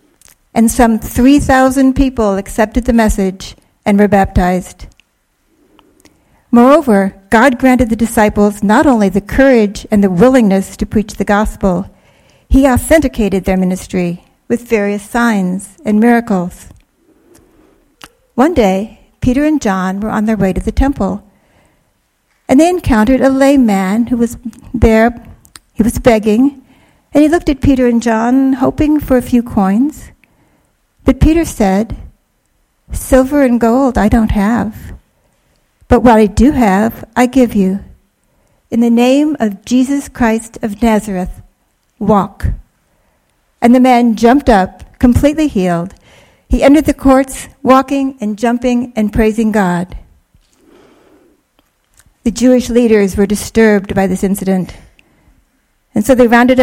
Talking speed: 130 wpm